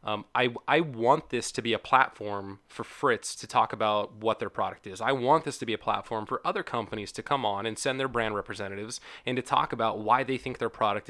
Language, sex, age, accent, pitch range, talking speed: English, male, 20-39, American, 105-120 Hz, 245 wpm